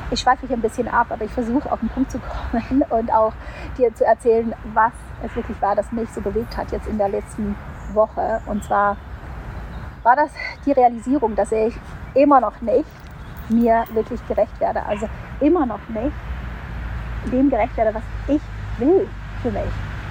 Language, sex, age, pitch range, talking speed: German, female, 30-49, 225-270 Hz, 180 wpm